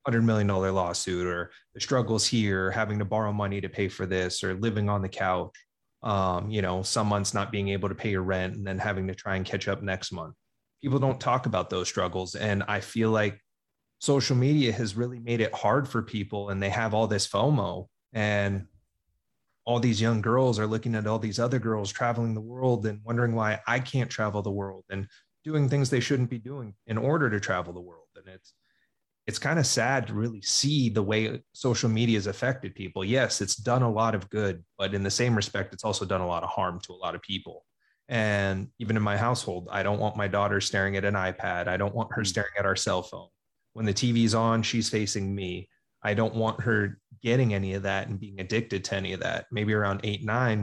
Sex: male